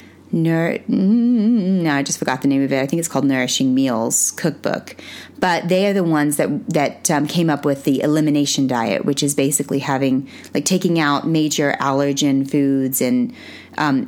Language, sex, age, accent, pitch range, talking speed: English, female, 30-49, American, 140-180 Hz, 175 wpm